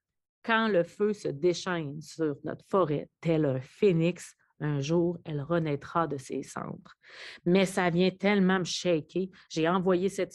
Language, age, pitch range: French, 30-49, 150-180 Hz